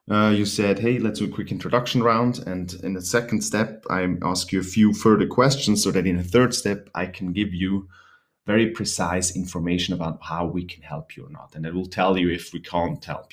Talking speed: 235 wpm